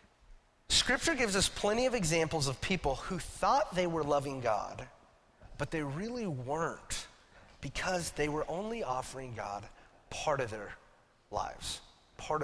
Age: 30-49